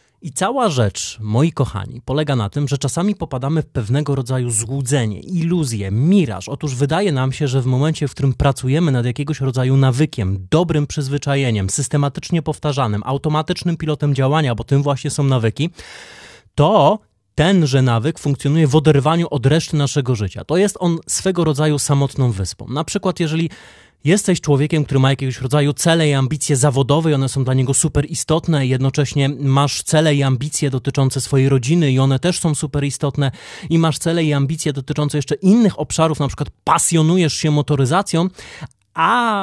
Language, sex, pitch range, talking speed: Polish, male, 135-165 Hz, 165 wpm